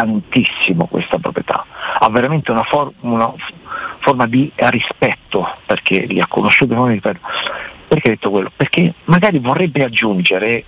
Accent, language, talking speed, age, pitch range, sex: native, Italian, 135 wpm, 50-69, 110-160 Hz, male